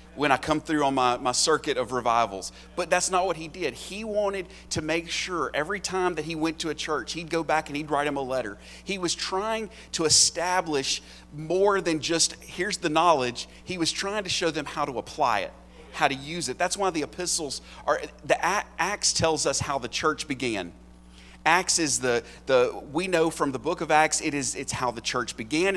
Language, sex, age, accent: English, male, 30-49, American